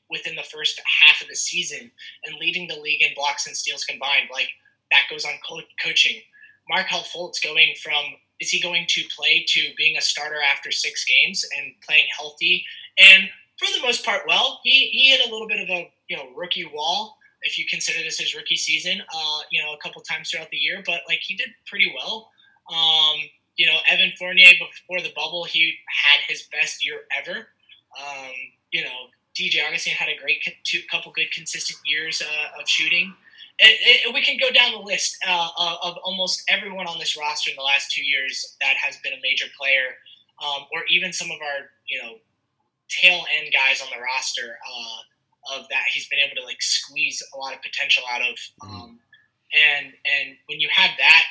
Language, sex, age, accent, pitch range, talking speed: English, male, 20-39, American, 145-185 Hz, 200 wpm